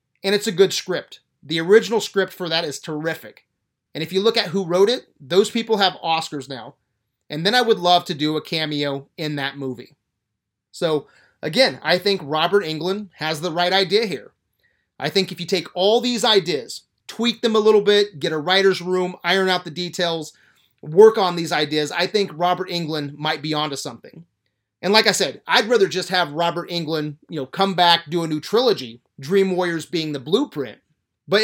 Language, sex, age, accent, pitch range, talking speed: English, male, 30-49, American, 155-200 Hz, 200 wpm